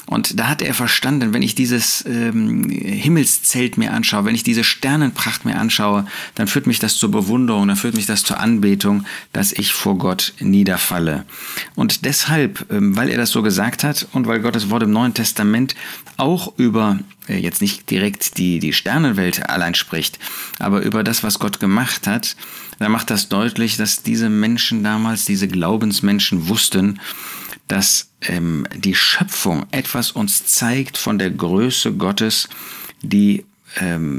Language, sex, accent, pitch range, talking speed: German, male, German, 110-150 Hz, 165 wpm